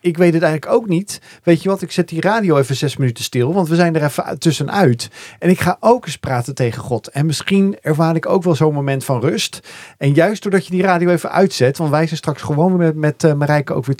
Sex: male